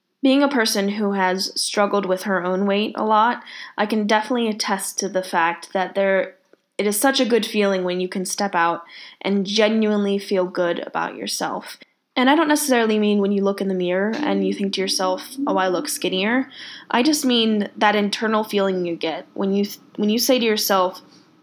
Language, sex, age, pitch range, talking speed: English, female, 10-29, 185-220 Hz, 205 wpm